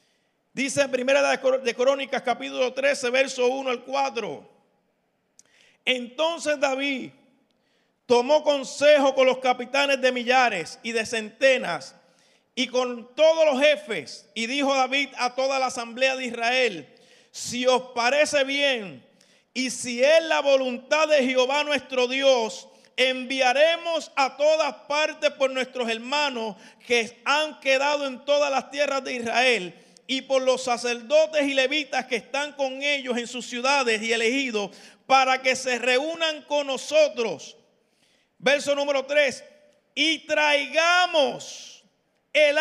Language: Spanish